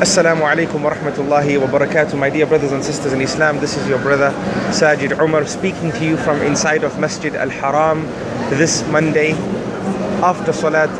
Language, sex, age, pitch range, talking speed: English, male, 30-49, 145-175 Hz, 165 wpm